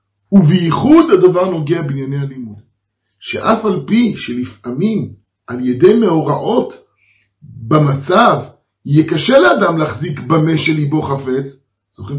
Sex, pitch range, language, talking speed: male, 120-180 Hz, Hebrew, 110 wpm